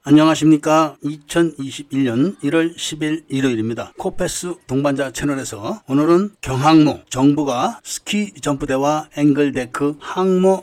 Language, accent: Korean, native